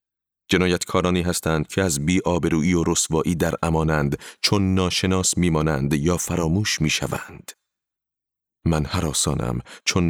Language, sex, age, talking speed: Persian, male, 40-59, 120 wpm